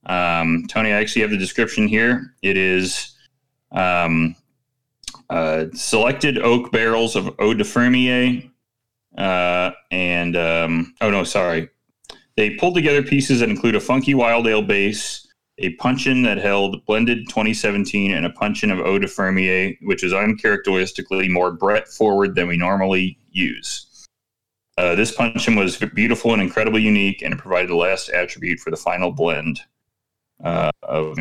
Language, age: English, 30-49